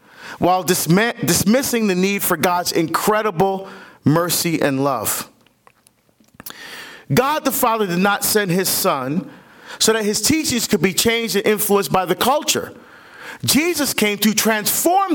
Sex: male